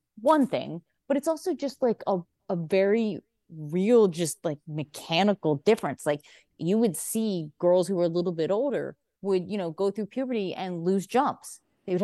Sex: female